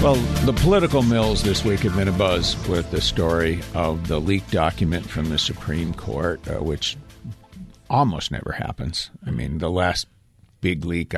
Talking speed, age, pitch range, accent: 165 wpm, 60-79, 80-105 Hz, American